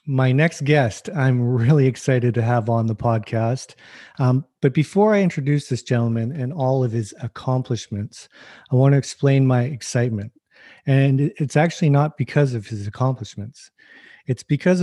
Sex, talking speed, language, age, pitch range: male, 160 wpm, English, 40-59, 115-145 Hz